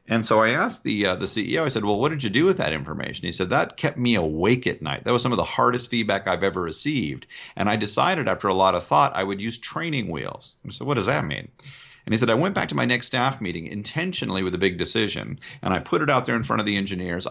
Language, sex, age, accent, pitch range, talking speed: English, male, 40-59, American, 95-115 Hz, 285 wpm